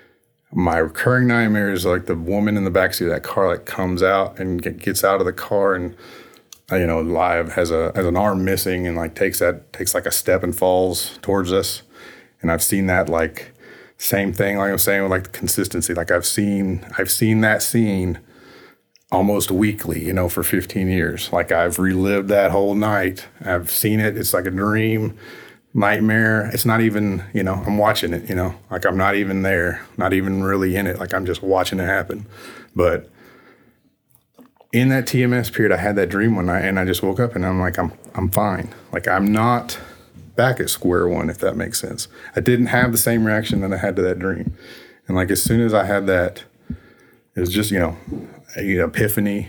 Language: English